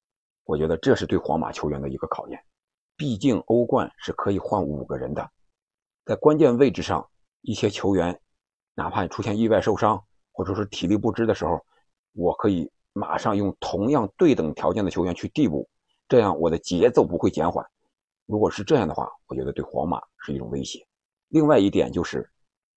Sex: male